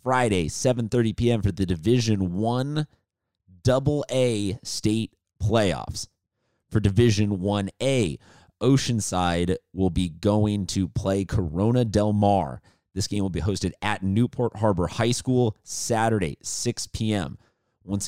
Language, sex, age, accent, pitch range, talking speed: English, male, 30-49, American, 95-120 Hz, 120 wpm